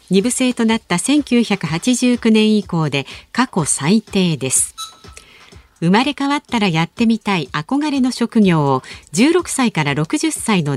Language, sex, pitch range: Japanese, female, 165-245 Hz